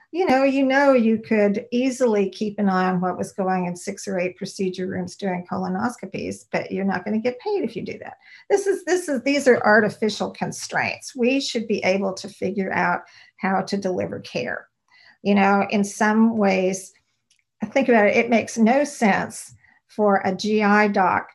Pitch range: 190-230 Hz